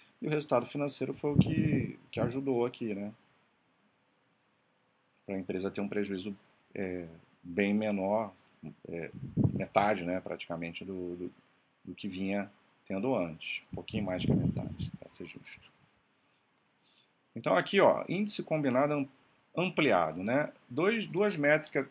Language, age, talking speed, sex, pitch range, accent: Portuguese, 40-59, 135 wpm, male, 95-130 Hz, Brazilian